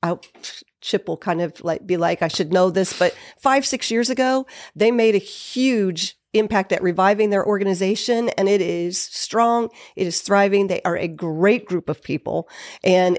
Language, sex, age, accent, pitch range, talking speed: English, female, 40-59, American, 180-210 Hz, 185 wpm